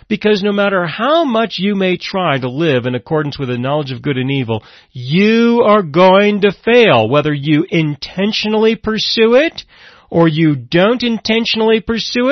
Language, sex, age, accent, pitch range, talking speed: English, male, 40-59, American, 150-220 Hz, 165 wpm